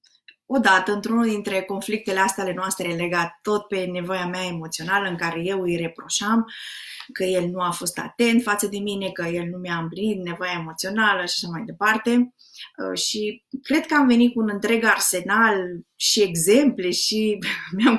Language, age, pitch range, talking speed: Romanian, 20-39, 195-245 Hz, 170 wpm